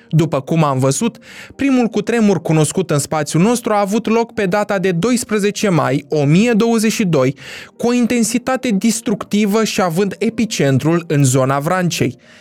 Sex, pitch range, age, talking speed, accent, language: male, 140-215 Hz, 20-39, 140 wpm, native, Romanian